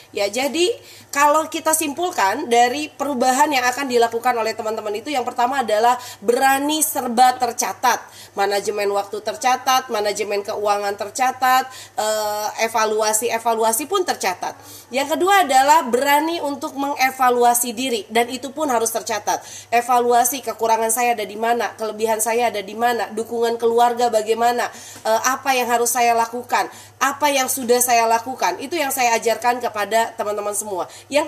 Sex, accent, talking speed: female, native, 140 wpm